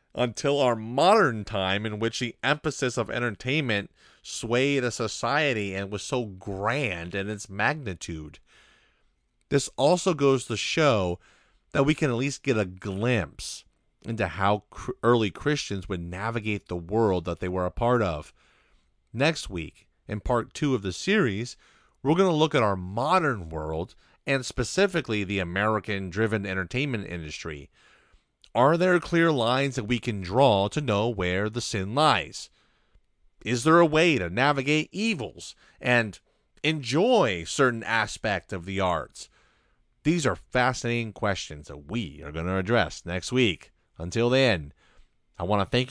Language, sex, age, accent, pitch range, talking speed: English, male, 30-49, American, 95-135 Hz, 150 wpm